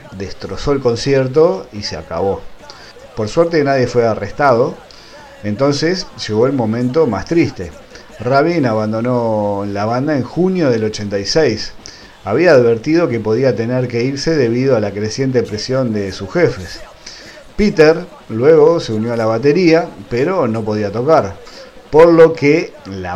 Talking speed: 145 wpm